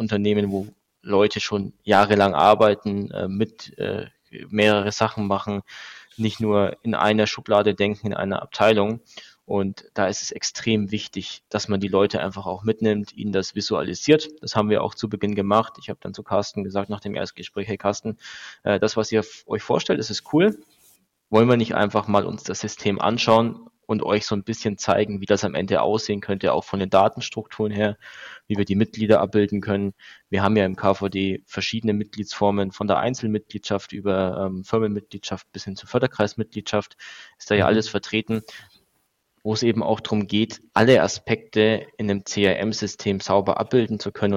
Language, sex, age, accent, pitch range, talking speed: German, male, 20-39, German, 100-110 Hz, 180 wpm